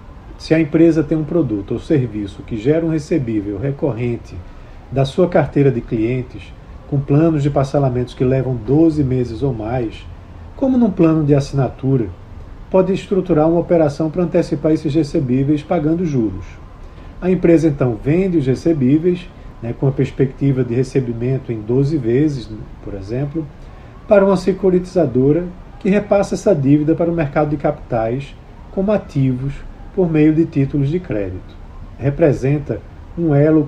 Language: Portuguese